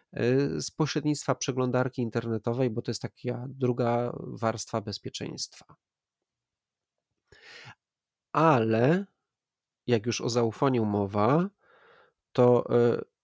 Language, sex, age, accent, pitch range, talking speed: Polish, male, 30-49, native, 120-145 Hz, 85 wpm